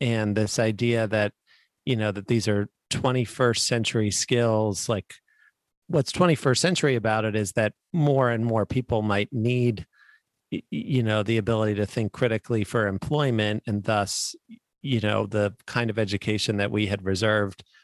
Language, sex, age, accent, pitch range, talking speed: English, male, 40-59, American, 105-130 Hz, 160 wpm